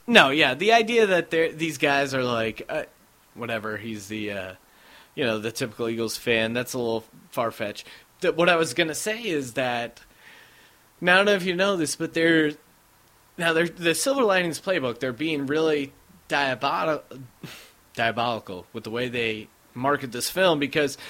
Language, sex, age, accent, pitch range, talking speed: English, male, 30-49, American, 130-195 Hz, 175 wpm